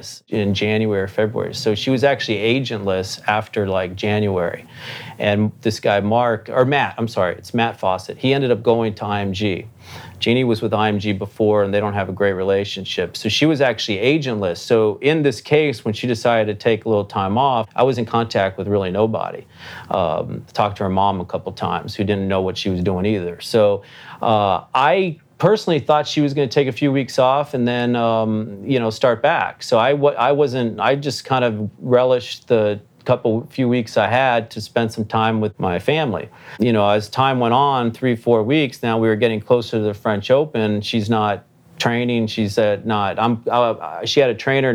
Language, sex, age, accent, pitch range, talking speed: English, male, 40-59, American, 105-125 Hz, 205 wpm